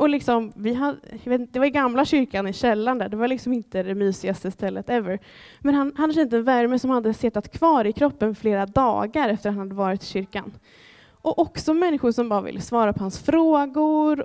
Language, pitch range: Swedish, 210-285 Hz